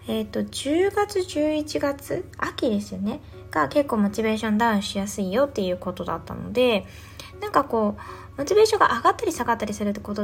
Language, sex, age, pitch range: Japanese, female, 20-39, 190-285 Hz